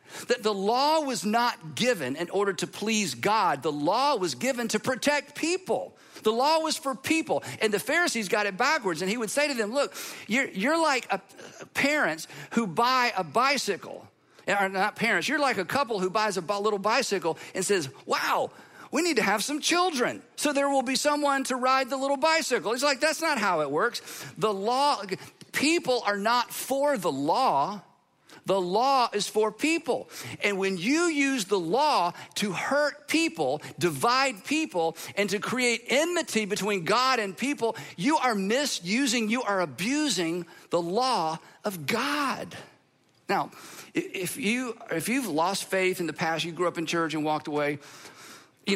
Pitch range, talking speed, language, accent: 185-270 Hz, 175 wpm, English, American